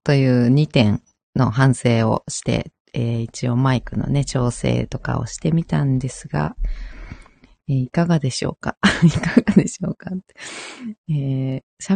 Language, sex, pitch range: Japanese, female, 130-195 Hz